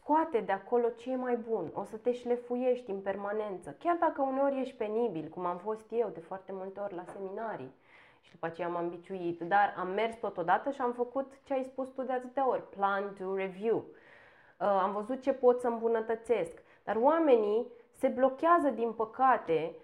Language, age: Romanian, 20-39